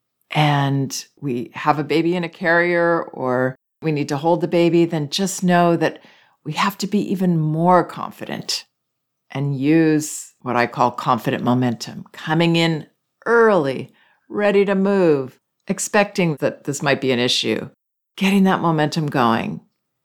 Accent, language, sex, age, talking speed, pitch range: American, English, female, 50-69, 150 wpm, 135-175 Hz